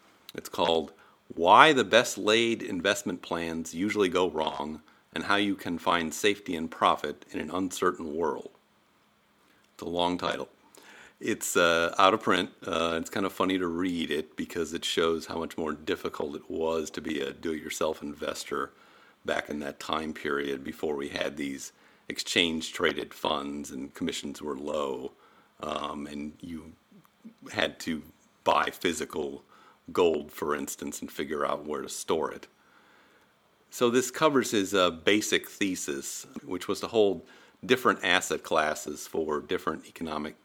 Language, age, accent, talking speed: English, 50-69, American, 155 wpm